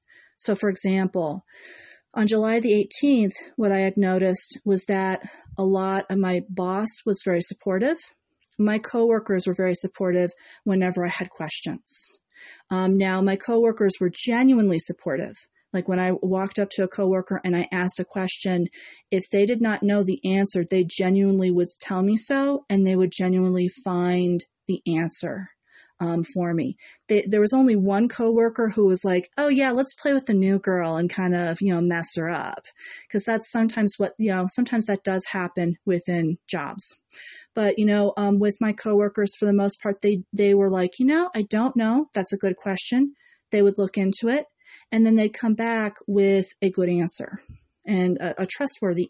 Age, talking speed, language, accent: 40-59, 185 wpm, English, American